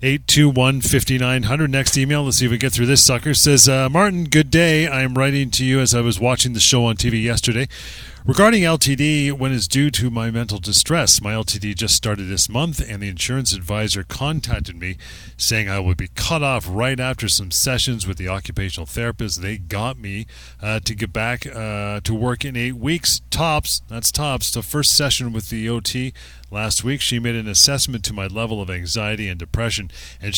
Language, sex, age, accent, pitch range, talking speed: English, male, 40-59, American, 100-130 Hz, 210 wpm